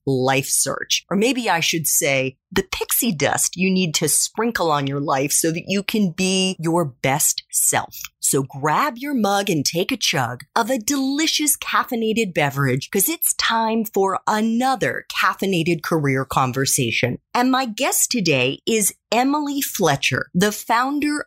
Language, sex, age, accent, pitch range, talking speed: English, female, 30-49, American, 145-245 Hz, 155 wpm